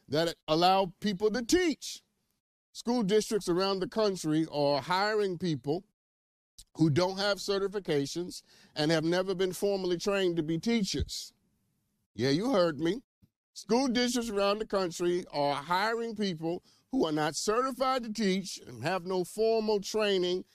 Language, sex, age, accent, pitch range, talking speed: English, male, 50-69, American, 170-230 Hz, 145 wpm